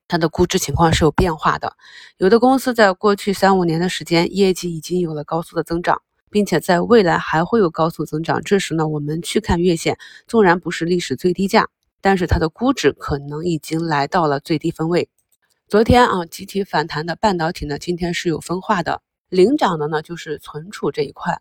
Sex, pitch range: female, 160-200 Hz